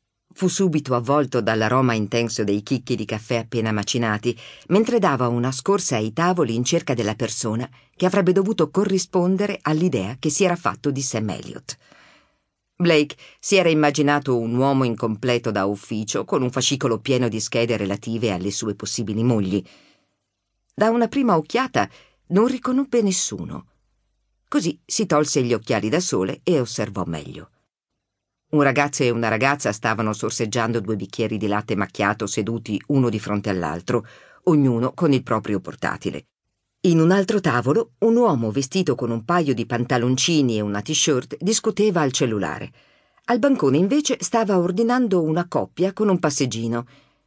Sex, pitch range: female, 110-175 Hz